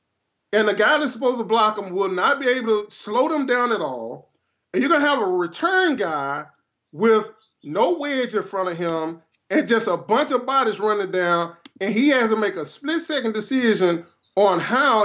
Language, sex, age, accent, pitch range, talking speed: English, male, 20-39, American, 210-300 Hz, 205 wpm